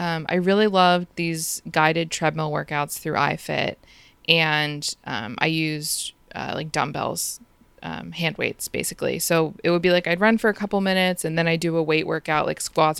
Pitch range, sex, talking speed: 160-210 Hz, female, 190 wpm